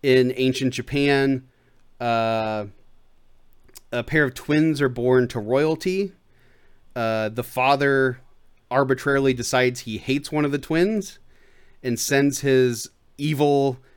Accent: American